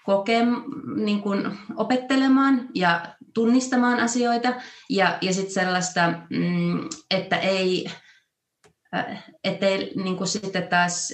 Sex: female